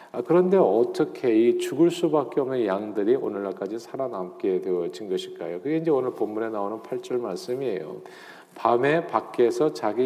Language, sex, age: Korean, male, 40-59